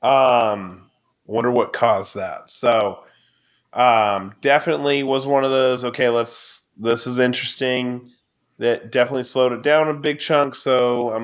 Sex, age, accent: male, 30-49, American